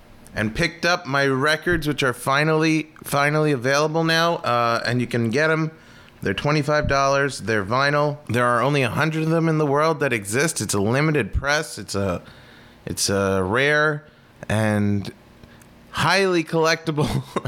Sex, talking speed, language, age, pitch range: male, 160 wpm, English, 30-49, 110-150 Hz